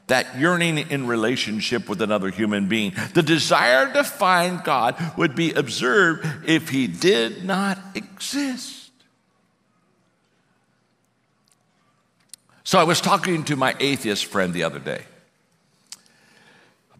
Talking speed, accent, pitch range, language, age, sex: 115 wpm, American, 105-170 Hz, English, 60-79, male